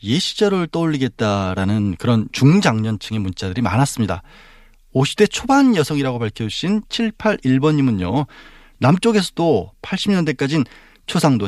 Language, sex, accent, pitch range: Korean, male, native, 110-160 Hz